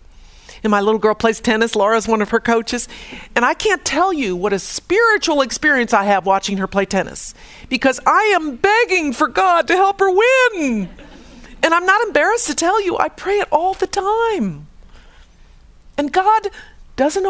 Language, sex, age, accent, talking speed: English, female, 50-69, American, 180 wpm